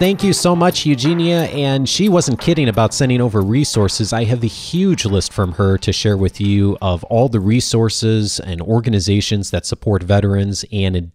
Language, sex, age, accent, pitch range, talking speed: English, male, 30-49, American, 100-120 Hz, 185 wpm